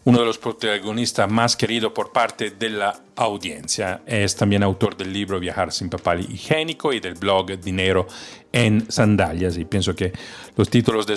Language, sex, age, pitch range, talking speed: Spanish, male, 40-59, 95-110 Hz, 170 wpm